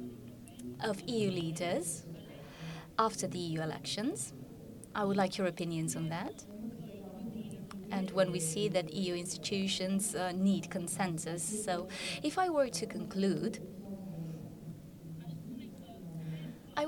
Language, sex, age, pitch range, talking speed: French, female, 20-39, 175-215 Hz, 110 wpm